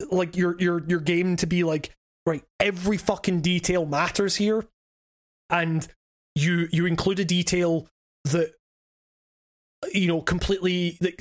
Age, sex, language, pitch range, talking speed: 20-39, male, English, 165-195 Hz, 135 wpm